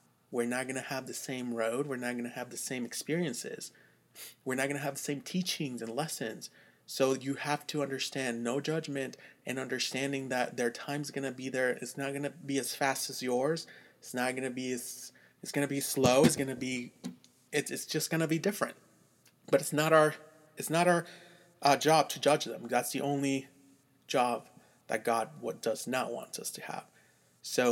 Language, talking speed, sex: English, 210 wpm, male